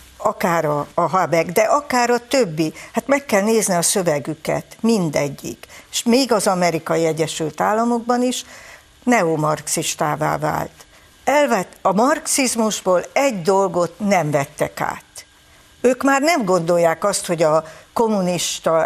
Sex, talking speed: female, 125 wpm